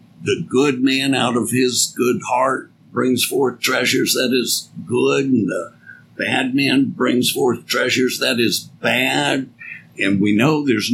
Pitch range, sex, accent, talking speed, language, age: 125-175 Hz, male, American, 155 wpm, English, 60-79